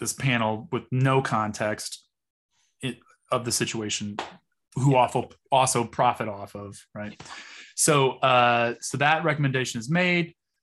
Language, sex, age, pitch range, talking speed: English, male, 20-39, 110-130 Hz, 120 wpm